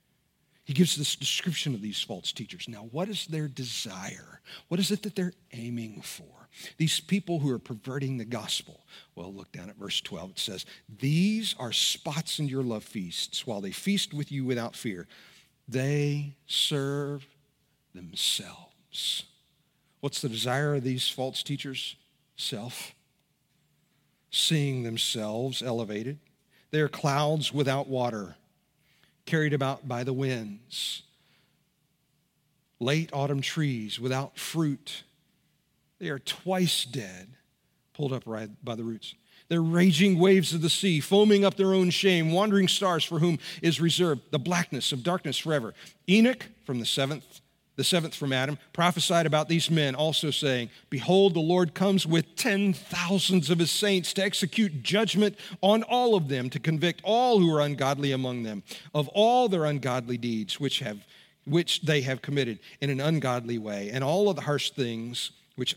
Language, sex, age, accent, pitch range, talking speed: English, male, 50-69, American, 130-175 Hz, 155 wpm